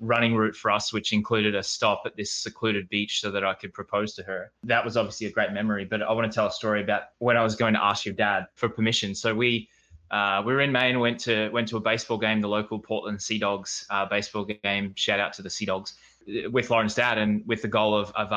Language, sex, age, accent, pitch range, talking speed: English, male, 20-39, Australian, 105-120 Hz, 260 wpm